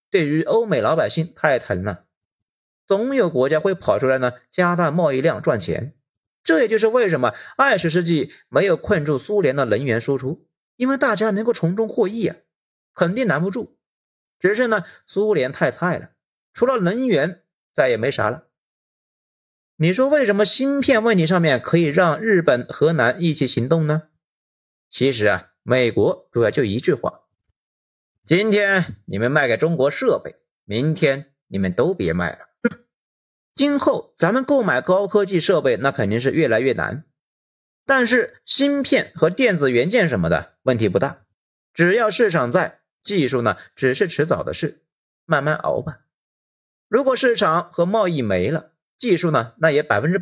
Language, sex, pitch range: Chinese, male, 135-220 Hz